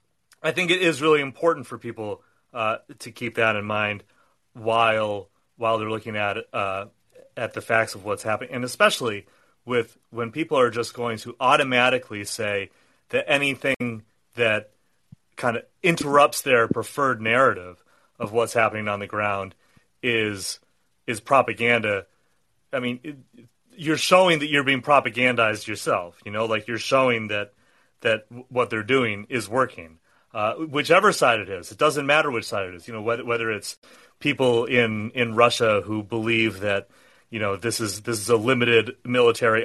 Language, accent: English, American